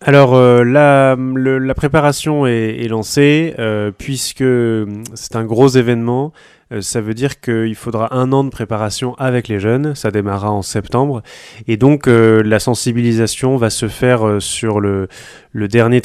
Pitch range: 105-125 Hz